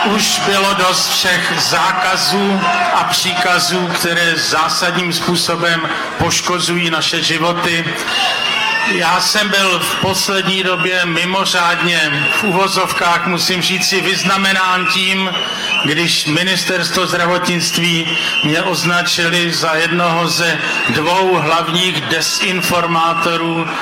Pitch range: 165-185 Hz